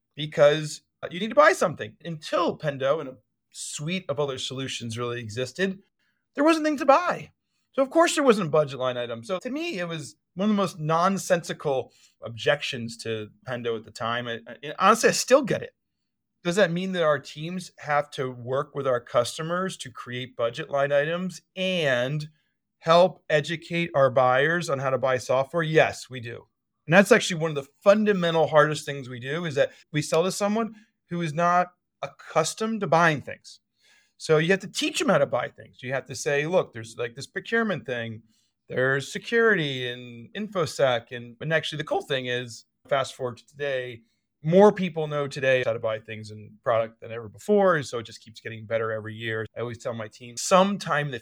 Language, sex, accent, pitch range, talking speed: English, male, American, 125-180 Hz, 200 wpm